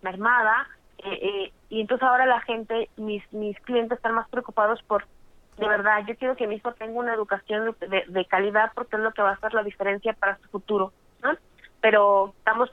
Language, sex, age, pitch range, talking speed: Spanish, female, 20-39, 195-225 Hz, 205 wpm